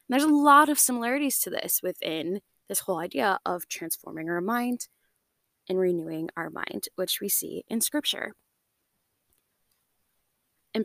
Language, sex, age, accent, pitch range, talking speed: English, female, 20-39, American, 185-260 Hz, 145 wpm